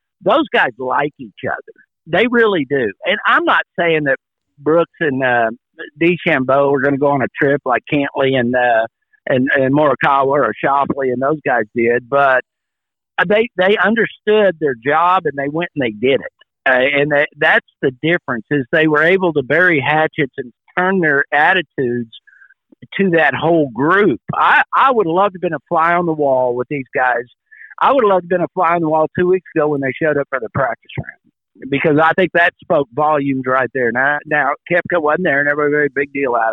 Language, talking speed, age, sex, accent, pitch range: English, 215 wpm, 50-69, male, American, 135-170 Hz